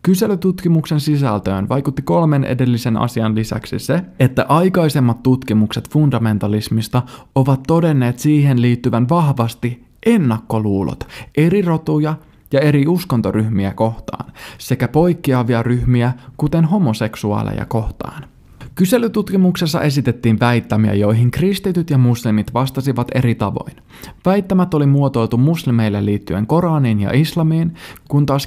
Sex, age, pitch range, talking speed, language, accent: male, 20-39, 120-165 Hz, 105 wpm, Finnish, native